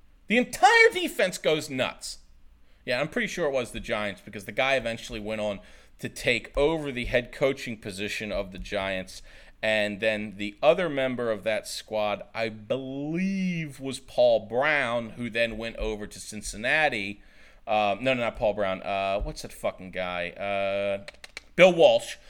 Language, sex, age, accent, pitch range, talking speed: English, male, 40-59, American, 105-145 Hz, 165 wpm